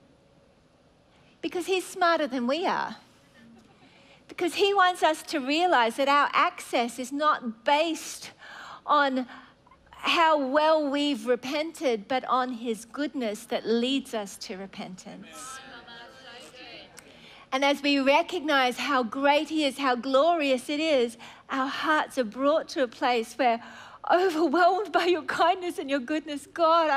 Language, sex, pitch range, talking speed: English, female, 240-315 Hz, 135 wpm